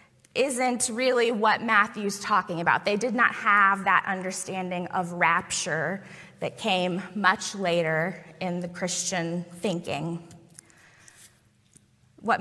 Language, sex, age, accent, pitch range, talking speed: English, female, 20-39, American, 185-240 Hz, 110 wpm